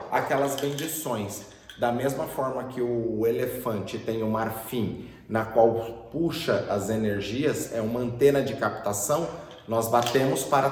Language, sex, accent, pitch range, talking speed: Portuguese, male, Brazilian, 115-140 Hz, 145 wpm